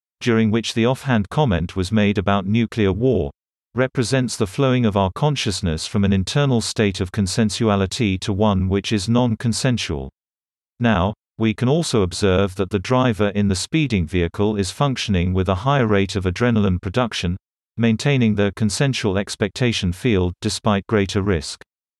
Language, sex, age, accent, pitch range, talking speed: English, male, 50-69, British, 95-120 Hz, 155 wpm